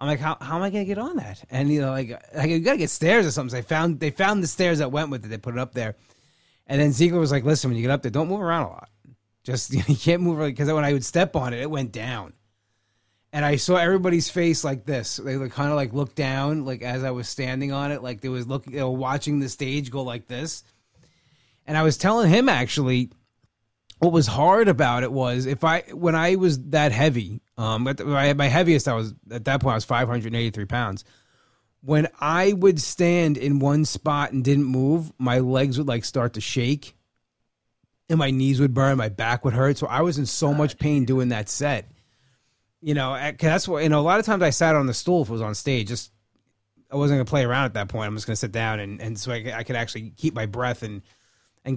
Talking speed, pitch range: 255 wpm, 120-150 Hz